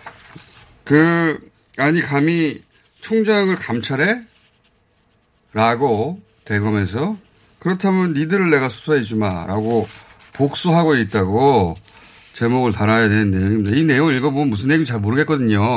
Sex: male